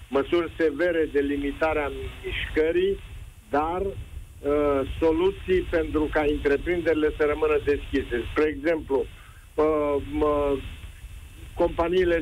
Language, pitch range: Romanian, 145-180 Hz